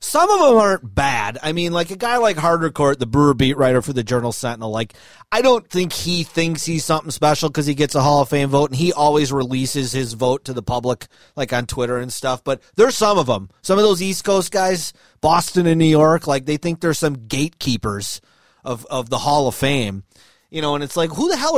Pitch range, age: 125-160 Hz, 30-49